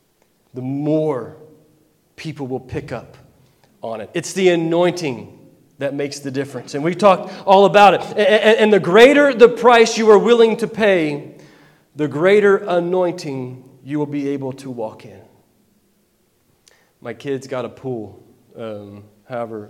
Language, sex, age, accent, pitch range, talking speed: English, male, 40-59, American, 130-170 Hz, 150 wpm